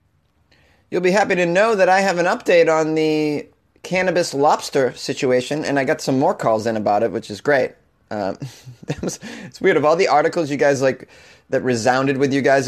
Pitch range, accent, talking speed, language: 125-160 Hz, American, 200 wpm, English